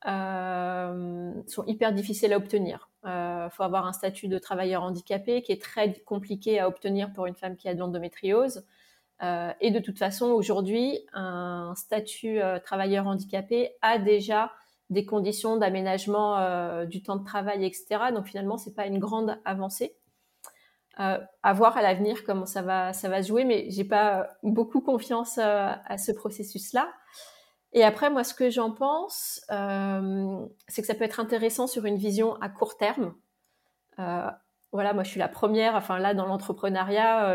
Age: 30-49